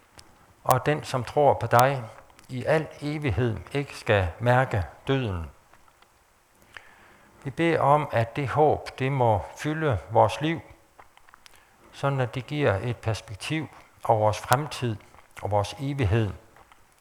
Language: Danish